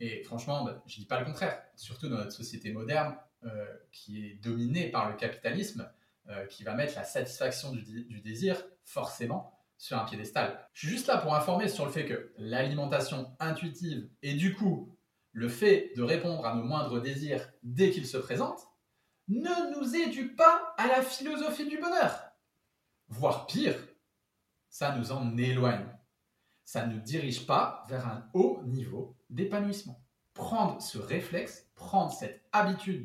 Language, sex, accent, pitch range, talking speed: French, male, French, 120-190 Hz, 165 wpm